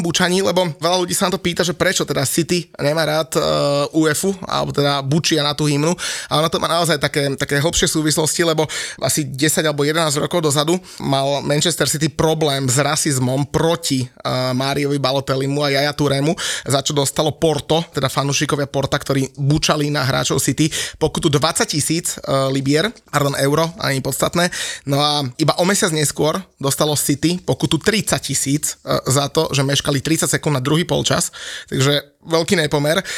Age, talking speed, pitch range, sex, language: 20-39, 175 wpm, 140-160 Hz, male, Slovak